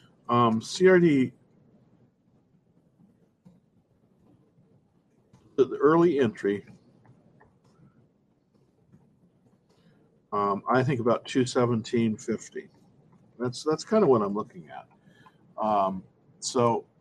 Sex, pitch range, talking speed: male, 120-165 Hz, 80 wpm